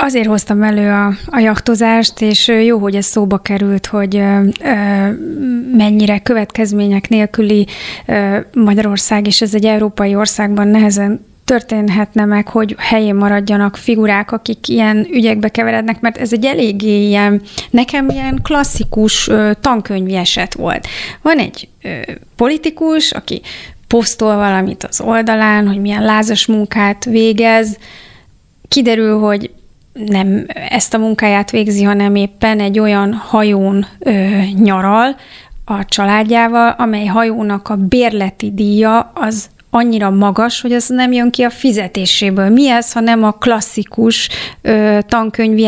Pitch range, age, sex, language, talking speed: 205-230 Hz, 30-49, female, Hungarian, 125 wpm